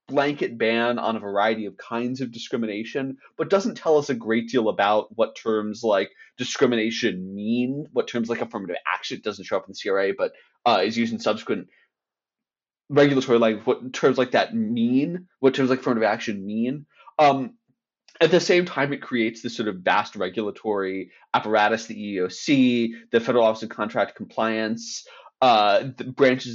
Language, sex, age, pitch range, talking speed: English, male, 20-39, 115-155 Hz, 175 wpm